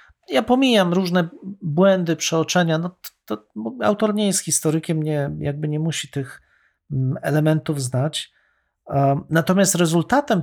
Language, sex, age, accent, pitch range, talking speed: Polish, male, 40-59, native, 140-175 Hz, 120 wpm